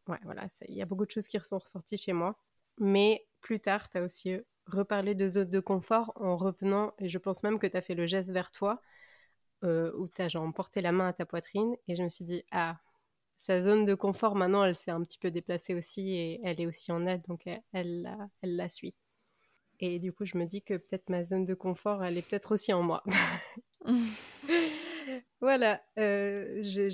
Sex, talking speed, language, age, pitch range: female, 225 wpm, French, 20-39, 180-210 Hz